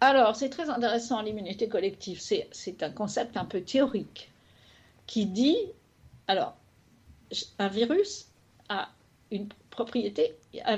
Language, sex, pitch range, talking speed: French, female, 205-270 Hz, 115 wpm